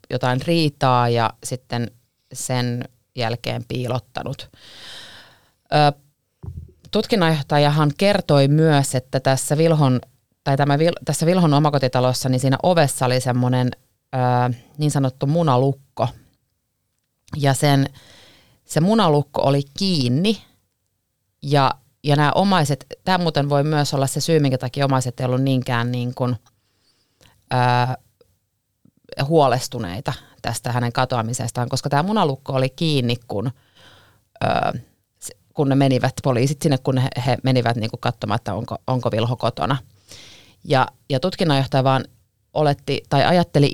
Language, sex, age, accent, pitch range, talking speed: Finnish, female, 30-49, native, 120-145 Hz, 115 wpm